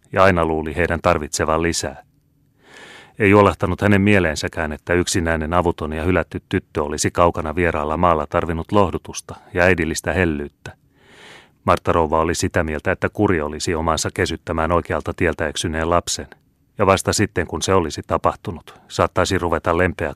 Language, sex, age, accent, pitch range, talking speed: Finnish, male, 30-49, native, 80-95 Hz, 145 wpm